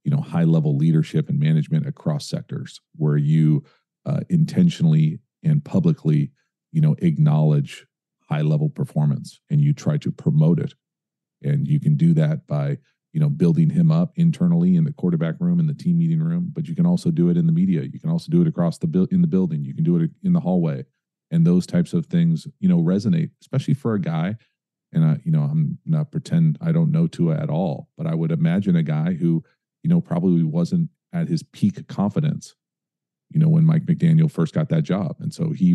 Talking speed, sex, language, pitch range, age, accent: 215 wpm, male, English, 155-175 Hz, 40-59, American